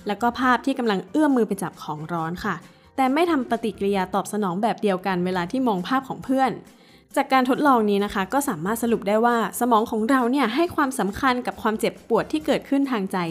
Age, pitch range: 20-39, 195-265 Hz